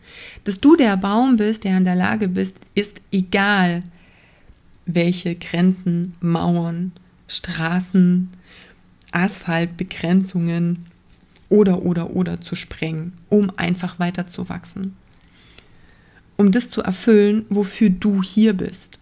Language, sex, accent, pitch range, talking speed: German, female, German, 175-210 Hz, 105 wpm